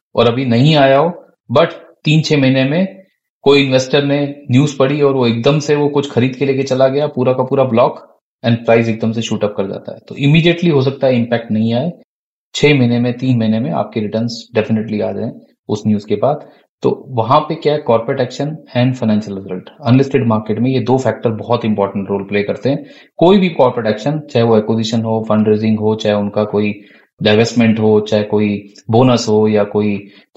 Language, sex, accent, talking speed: Hindi, male, native, 210 wpm